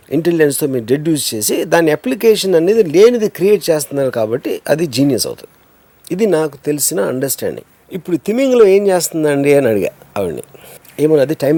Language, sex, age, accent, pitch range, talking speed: Telugu, male, 50-69, native, 145-210 Hz, 150 wpm